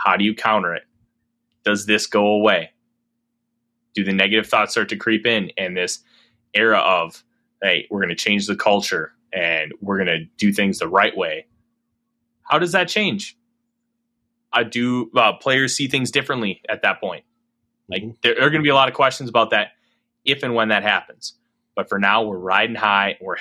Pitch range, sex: 115-155 Hz, male